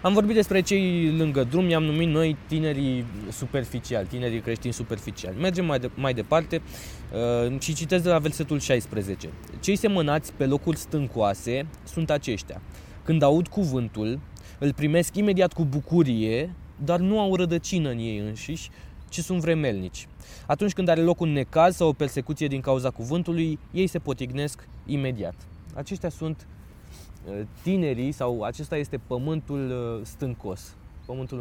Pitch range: 115-160 Hz